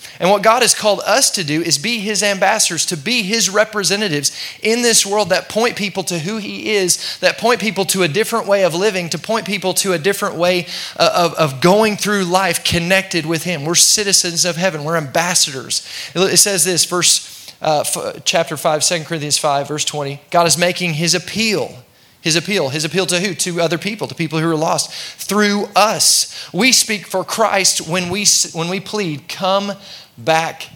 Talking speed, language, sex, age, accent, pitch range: 195 wpm, English, male, 30-49, American, 165-200 Hz